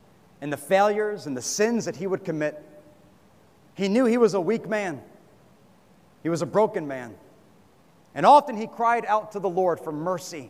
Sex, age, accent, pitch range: male, 40-59, American, 185-270 Hz